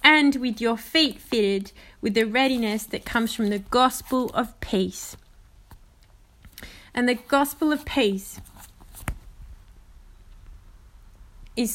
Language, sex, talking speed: English, female, 105 wpm